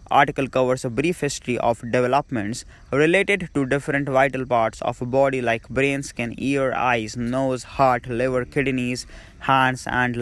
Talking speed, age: 155 wpm, 20-39